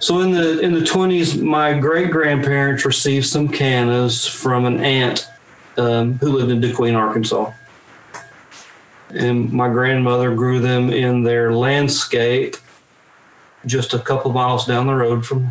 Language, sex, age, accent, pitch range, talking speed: English, male, 40-59, American, 115-130 Hz, 145 wpm